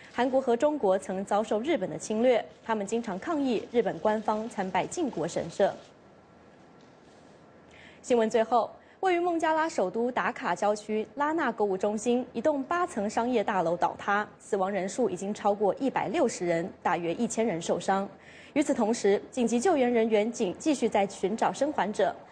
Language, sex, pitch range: English, female, 205-260 Hz